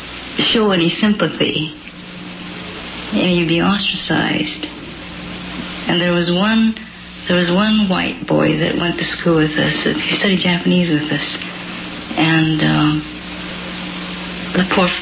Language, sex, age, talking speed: English, female, 60-79, 130 wpm